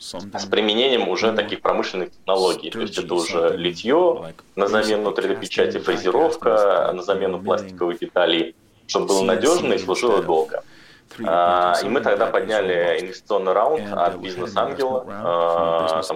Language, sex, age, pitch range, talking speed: Russian, male, 20-39, 90-145 Hz, 125 wpm